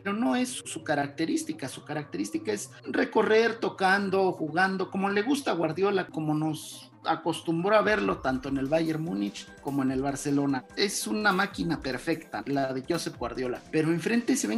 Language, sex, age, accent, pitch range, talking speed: Spanish, male, 40-59, Mexican, 150-215 Hz, 175 wpm